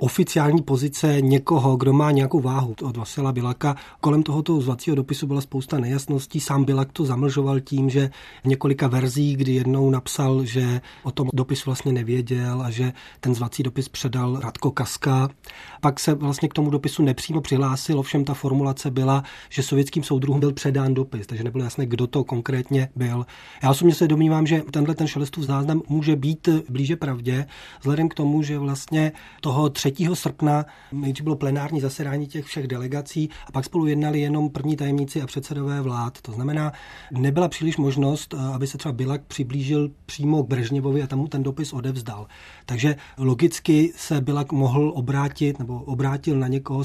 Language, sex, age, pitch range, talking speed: Czech, male, 30-49, 135-150 Hz, 170 wpm